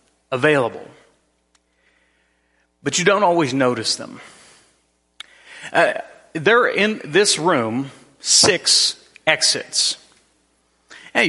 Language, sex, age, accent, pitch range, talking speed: English, male, 40-59, American, 105-155 Hz, 85 wpm